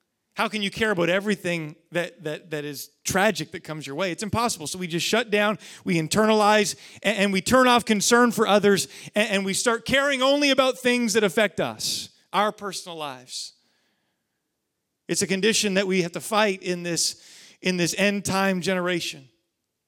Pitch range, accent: 185-235 Hz, American